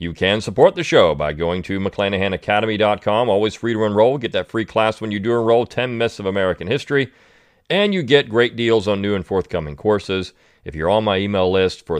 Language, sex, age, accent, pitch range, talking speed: English, male, 40-59, American, 95-115 Hz, 215 wpm